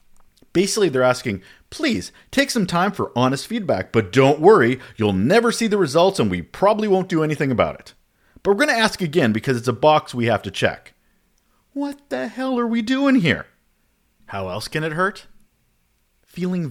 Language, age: English, 40-59